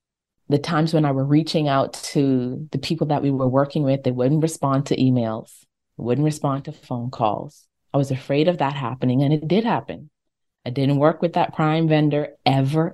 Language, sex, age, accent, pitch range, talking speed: English, female, 20-39, American, 135-185 Hz, 200 wpm